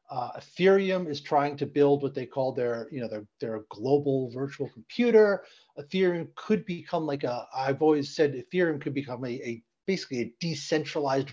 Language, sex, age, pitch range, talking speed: English, male, 40-59, 130-160 Hz, 175 wpm